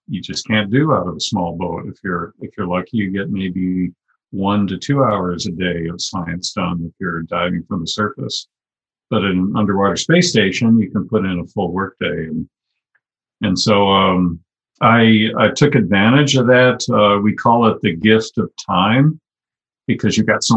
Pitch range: 90-110 Hz